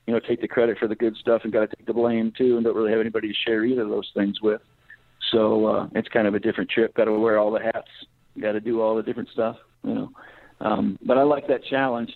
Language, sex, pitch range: English, male, 110-120 Hz